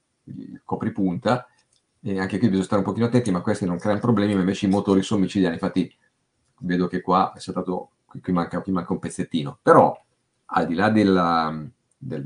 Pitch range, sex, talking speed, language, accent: 95-120 Hz, male, 185 wpm, Italian, native